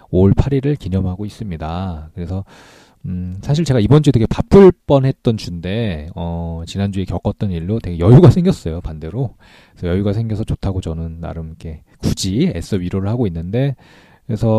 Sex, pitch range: male, 85-115 Hz